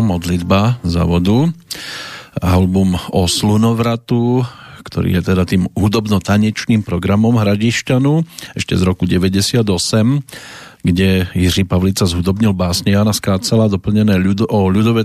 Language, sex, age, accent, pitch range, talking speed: English, male, 40-59, Czech, 95-115 Hz, 115 wpm